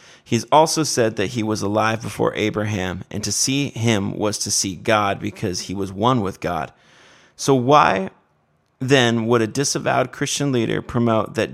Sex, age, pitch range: male, 30-49, 105-130 Hz